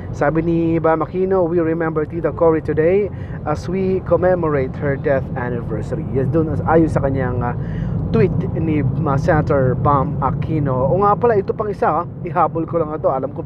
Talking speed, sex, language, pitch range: 165 wpm, male, Filipino, 135-170 Hz